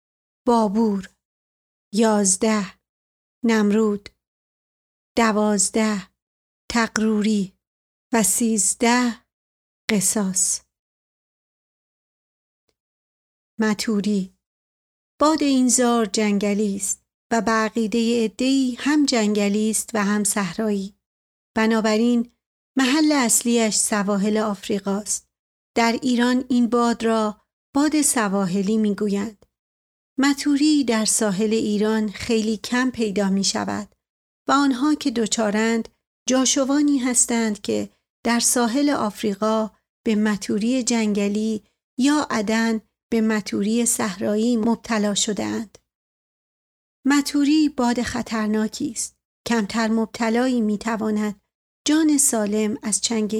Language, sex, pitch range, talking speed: Persian, female, 210-245 Hz, 85 wpm